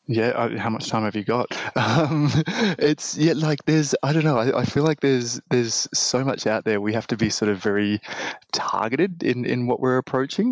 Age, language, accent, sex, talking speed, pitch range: 20-39, English, Australian, male, 215 wpm, 110-135 Hz